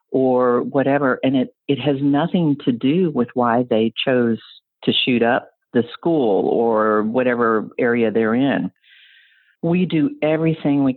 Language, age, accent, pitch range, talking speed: English, 50-69, American, 120-160 Hz, 150 wpm